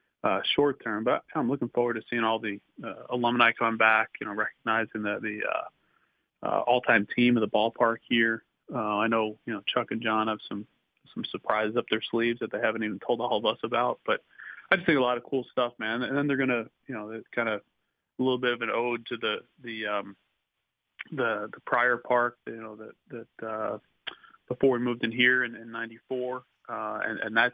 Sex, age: male, 30-49